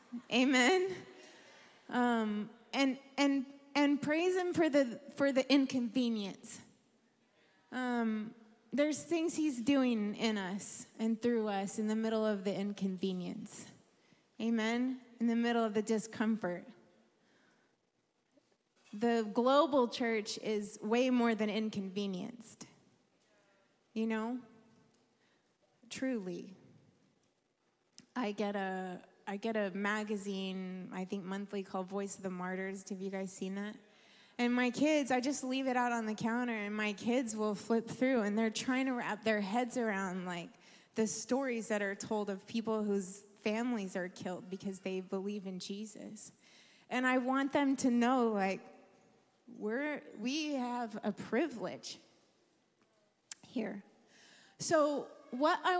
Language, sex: English, female